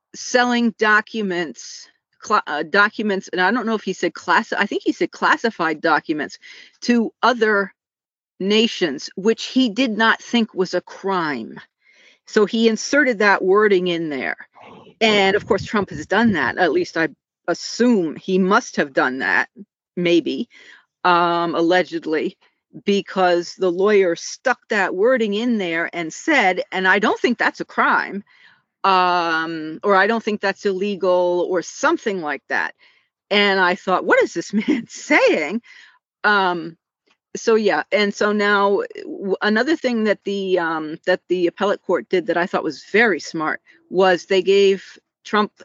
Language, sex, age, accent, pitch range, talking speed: English, female, 40-59, American, 180-220 Hz, 155 wpm